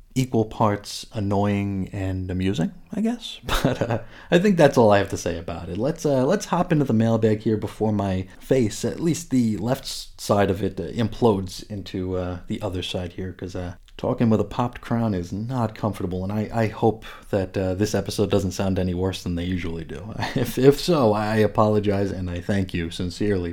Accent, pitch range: American, 95-130 Hz